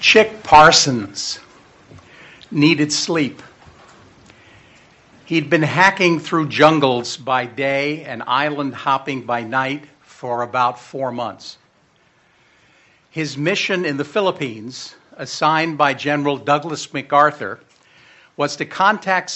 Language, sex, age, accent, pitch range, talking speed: English, male, 60-79, American, 125-160 Hz, 100 wpm